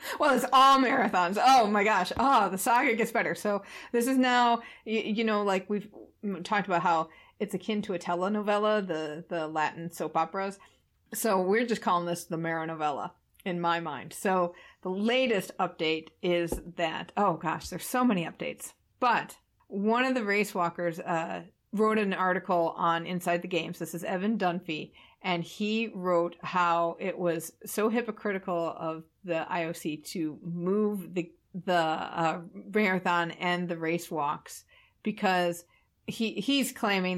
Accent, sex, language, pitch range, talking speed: American, female, English, 170-210 Hz, 160 wpm